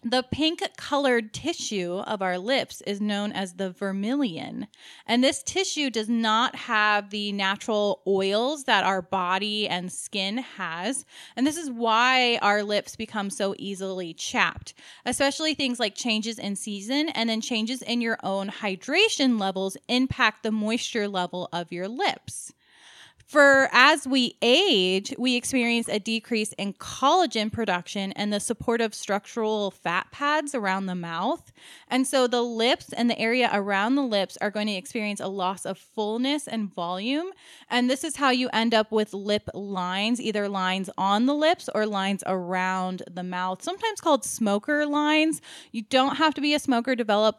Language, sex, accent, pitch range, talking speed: English, female, American, 195-255 Hz, 165 wpm